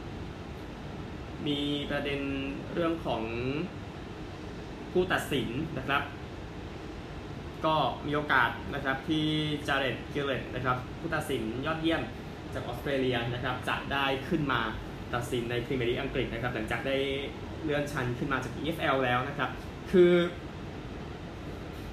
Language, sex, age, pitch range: Thai, male, 20-39, 115-140 Hz